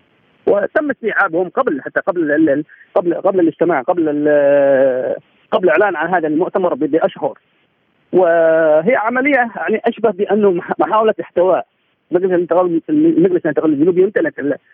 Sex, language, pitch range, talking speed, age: male, Arabic, 155-250 Hz, 110 wpm, 40-59